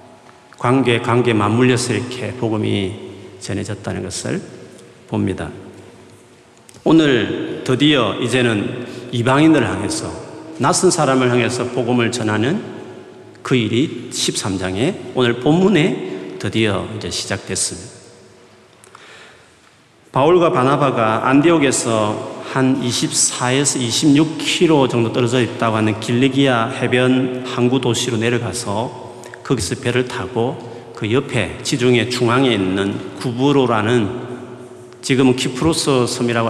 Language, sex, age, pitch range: Korean, male, 40-59, 105-130 Hz